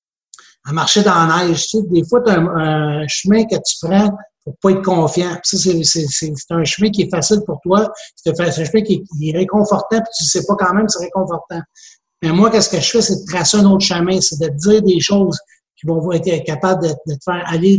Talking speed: 260 wpm